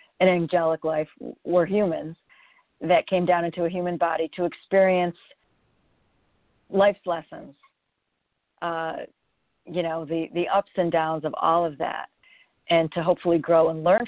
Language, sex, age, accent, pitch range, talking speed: English, female, 40-59, American, 165-200 Hz, 145 wpm